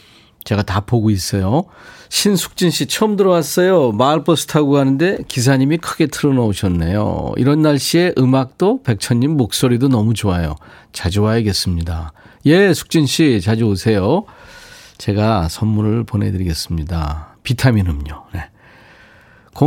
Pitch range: 95-140 Hz